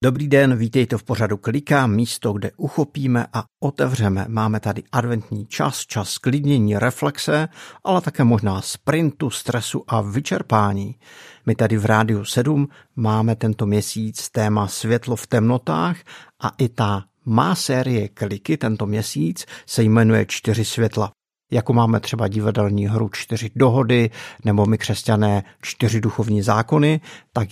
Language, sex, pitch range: Czech, male, 110-130 Hz